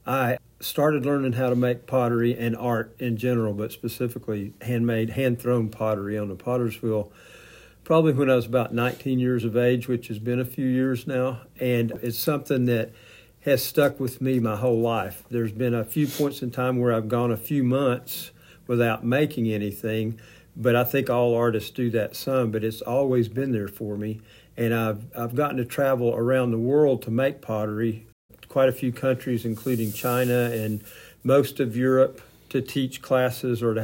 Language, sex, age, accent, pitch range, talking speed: English, male, 50-69, American, 115-130 Hz, 185 wpm